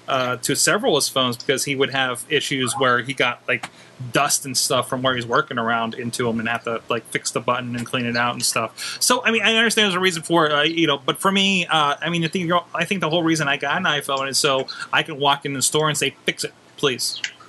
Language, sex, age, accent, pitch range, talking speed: English, male, 30-49, American, 135-170 Hz, 280 wpm